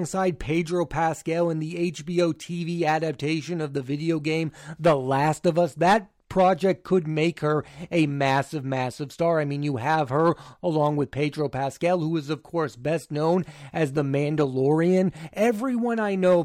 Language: English